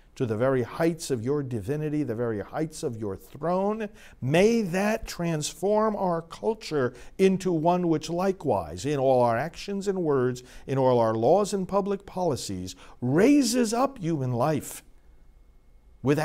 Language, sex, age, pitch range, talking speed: English, male, 50-69, 115-175 Hz, 150 wpm